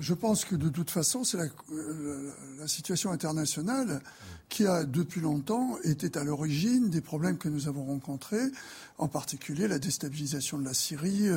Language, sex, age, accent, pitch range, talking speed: French, male, 60-79, French, 145-190 Hz, 170 wpm